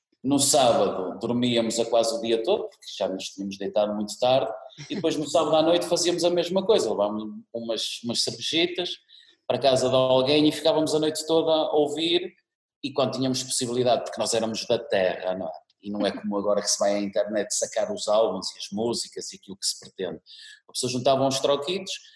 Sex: male